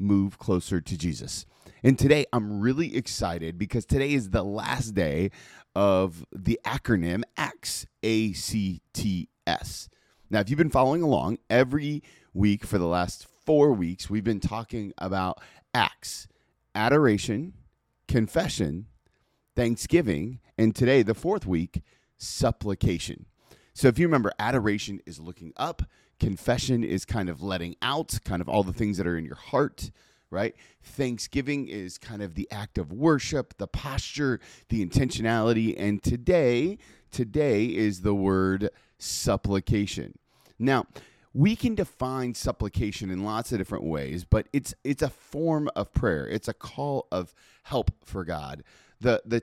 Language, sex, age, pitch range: English, male, 30-49, 95-130 Hz